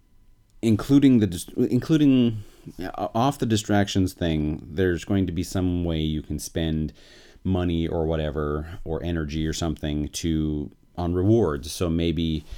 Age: 30-49